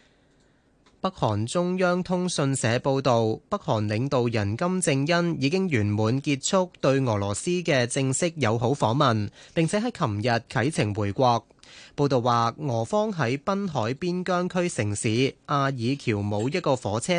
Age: 20-39